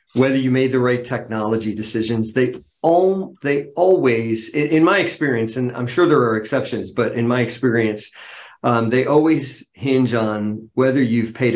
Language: English